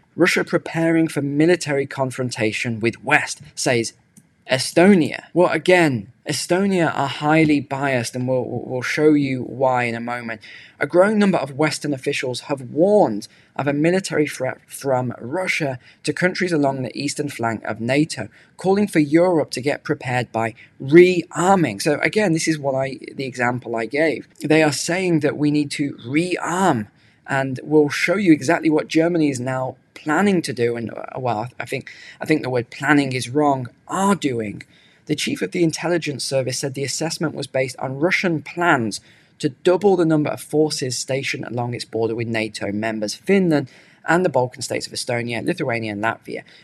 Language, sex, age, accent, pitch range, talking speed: English, male, 20-39, British, 125-165 Hz, 170 wpm